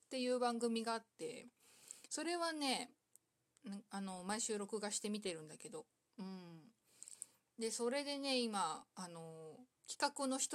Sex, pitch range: female, 195-265 Hz